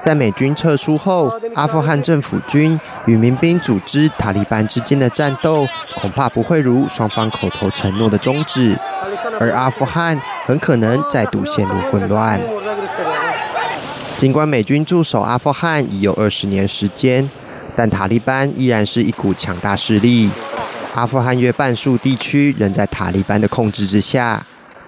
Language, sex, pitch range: Chinese, male, 110-140 Hz